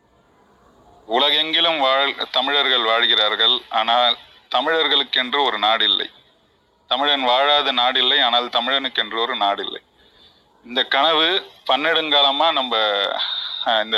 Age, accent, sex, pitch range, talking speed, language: 30-49, native, male, 125-145 Hz, 80 wpm, Tamil